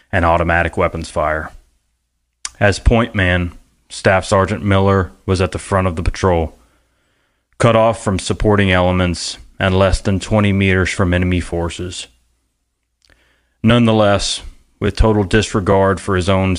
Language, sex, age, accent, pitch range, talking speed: English, male, 30-49, American, 80-100 Hz, 135 wpm